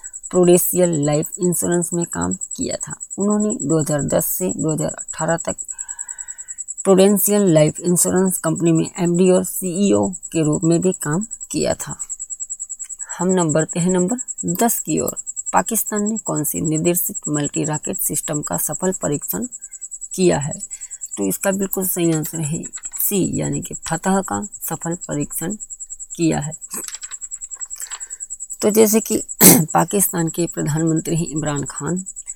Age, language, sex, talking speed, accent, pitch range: 20-39, Hindi, female, 125 wpm, native, 155-195 Hz